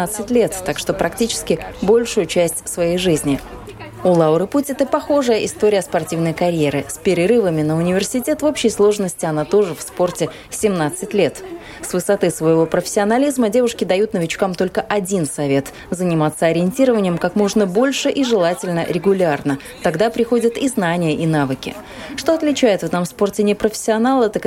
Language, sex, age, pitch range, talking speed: Russian, female, 20-39, 170-225 Hz, 145 wpm